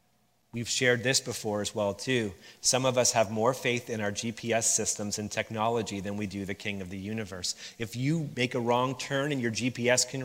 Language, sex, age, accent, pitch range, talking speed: English, male, 30-49, American, 100-125 Hz, 215 wpm